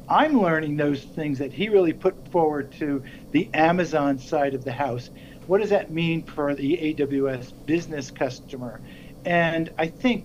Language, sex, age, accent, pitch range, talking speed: English, male, 50-69, American, 145-170 Hz, 165 wpm